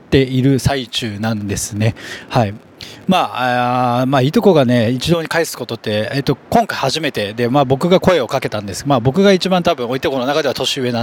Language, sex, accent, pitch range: Japanese, male, native, 120-160 Hz